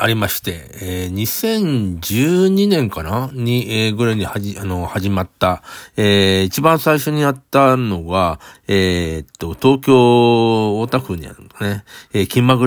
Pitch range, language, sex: 100-135 Hz, Japanese, male